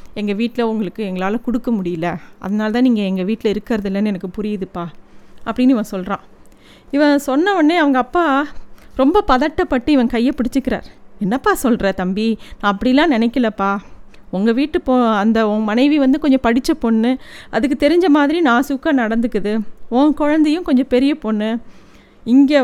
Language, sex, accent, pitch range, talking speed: Tamil, female, native, 215-260 Hz, 150 wpm